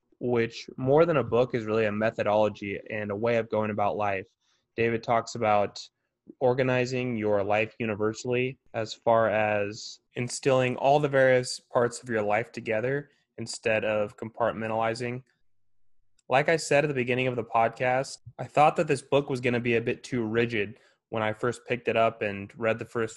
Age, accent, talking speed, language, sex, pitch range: 20-39, American, 180 wpm, English, male, 105-120 Hz